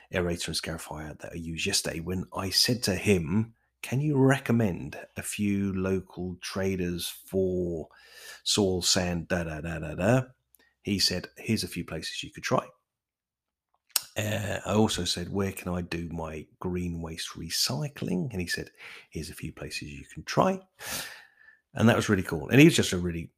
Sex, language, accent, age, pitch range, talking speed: male, English, British, 30-49, 85-110 Hz, 175 wpm